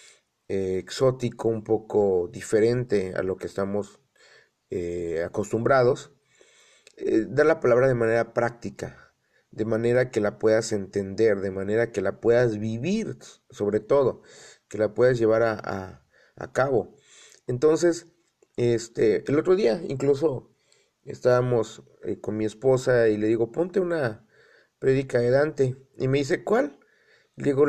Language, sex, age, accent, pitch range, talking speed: Spanish, male, 40-59, Mexican, 115-155 Hz, 140 wpm